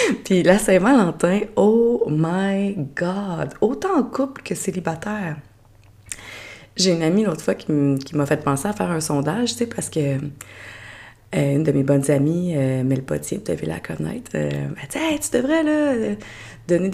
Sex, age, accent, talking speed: female, 30-49, Canadian, 175 wpm